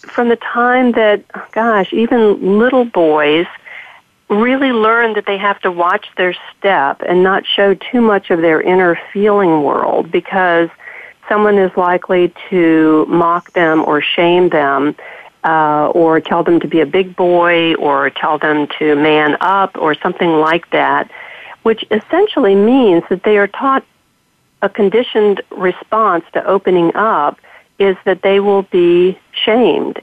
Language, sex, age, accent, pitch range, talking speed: English, female, 50-69, American, 165-210 Hz, 150 wpm